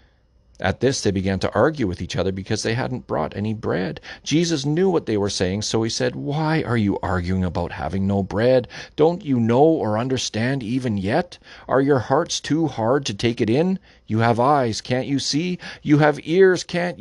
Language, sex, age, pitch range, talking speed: English, male, 40-59, 95-130 Hz, 205 wpm